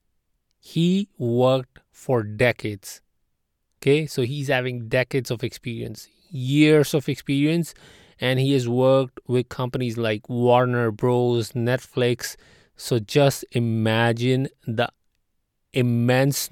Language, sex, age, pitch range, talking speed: English, male, 20-39, 110-130 Hz, 105 wpm